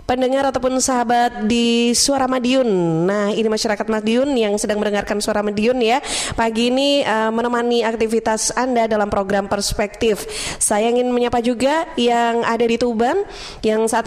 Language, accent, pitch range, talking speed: Indonesian, native, 220-265 Hz, 150 wpm